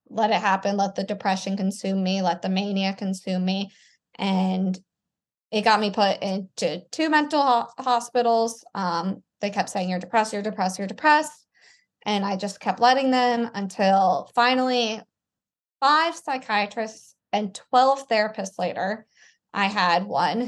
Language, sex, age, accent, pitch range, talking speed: English, female, 20-39, American, 195-240 Hz, 145 wpm